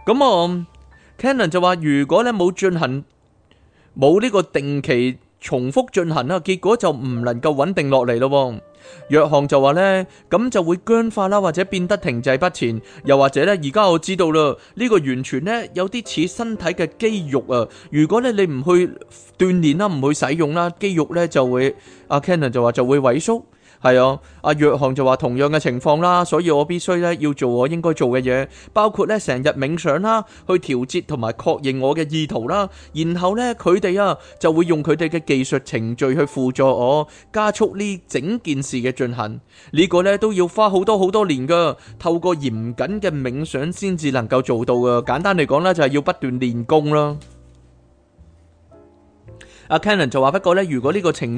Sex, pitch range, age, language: male, 130-180 Hz, 20-39, Chinese